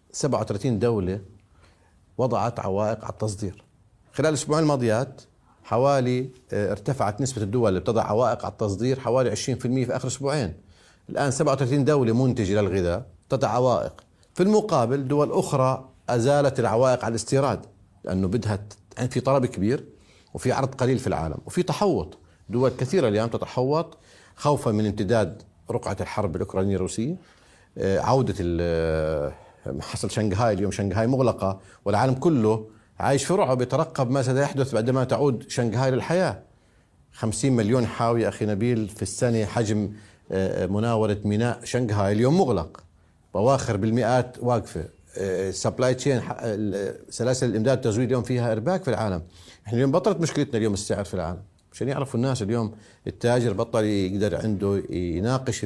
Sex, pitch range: male, 100-130 Hz